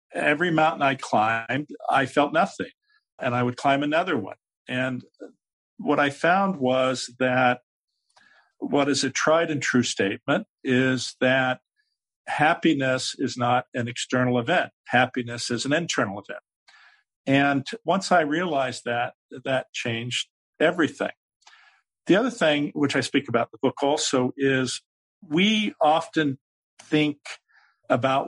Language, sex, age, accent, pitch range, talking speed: English, male, 50-69, American, 120-140 Hz, 135 wpm